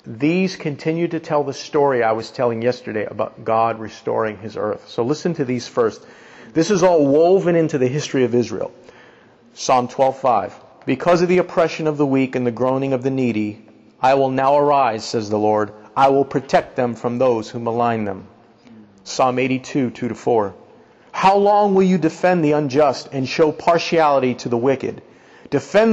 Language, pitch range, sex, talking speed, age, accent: English, 120-165 Hz, male, 175 wpm, 50-69, American